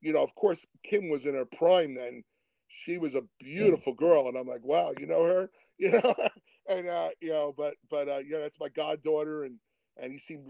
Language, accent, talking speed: English, American, 225 wpm